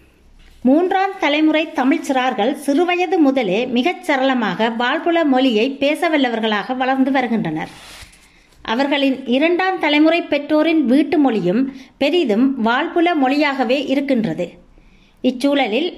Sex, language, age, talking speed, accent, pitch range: female, Tamil, 30-49, 85 wpm, native, 255-315 Hz